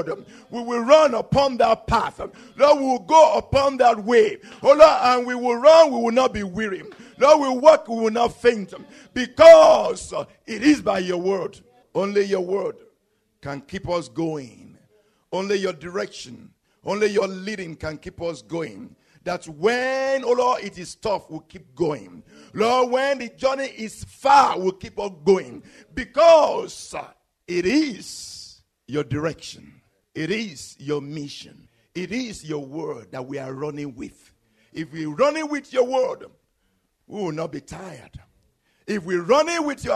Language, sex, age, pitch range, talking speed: English, male, 50-69, 160-250 Hz, 170 wpm